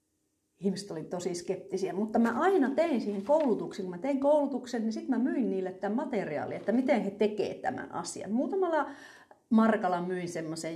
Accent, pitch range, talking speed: native, 175-245 Hz, 175 wpm